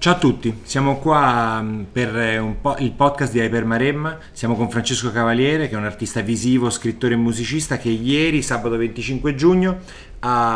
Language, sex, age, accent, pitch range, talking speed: Italian, male, 30-49, native, 110-130 Hz, 175 wpm